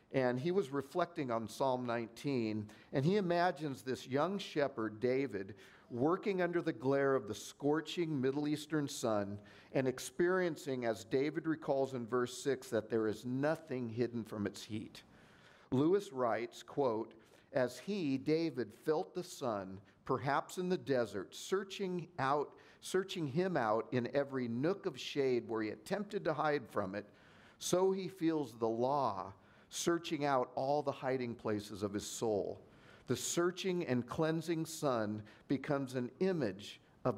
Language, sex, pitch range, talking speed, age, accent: English, male, 115-155 Hz, 150 wpm, 50-69, American